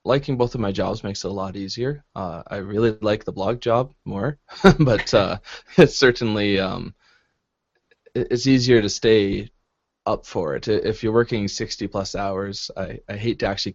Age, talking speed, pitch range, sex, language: 20-39, 180 wpm, 100-120 Hz, male, English